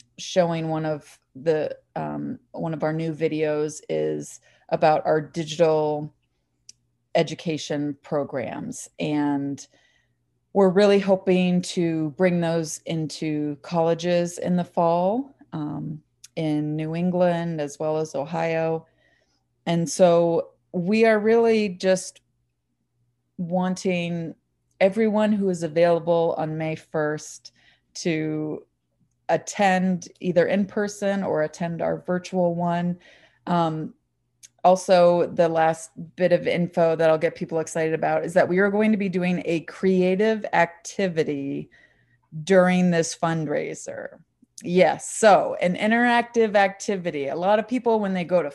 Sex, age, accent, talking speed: female, 30-49, American, 125 wpm